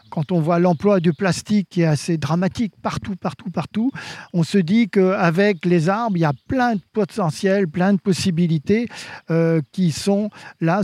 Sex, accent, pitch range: male, French, 160-195 Hz